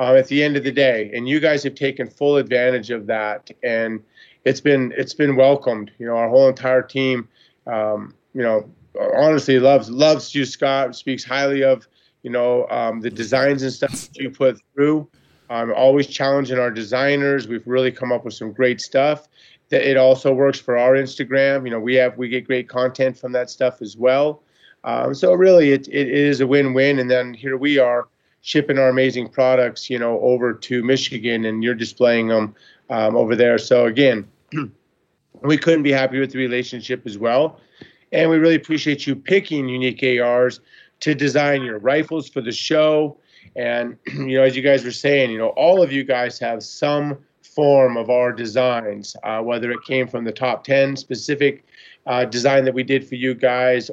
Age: 30-49